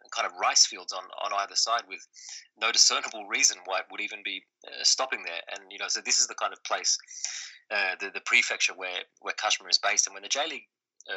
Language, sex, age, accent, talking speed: English, male, 20-39, Australian, 230 wpm